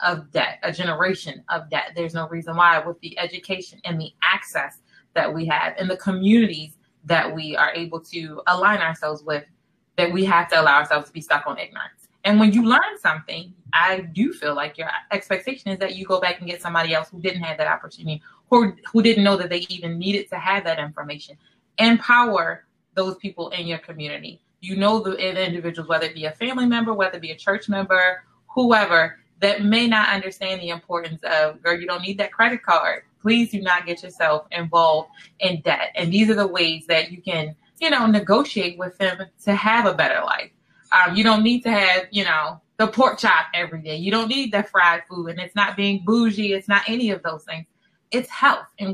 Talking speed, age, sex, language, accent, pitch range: 215 wpm, 20-39, female, English, American, 165-205 Hz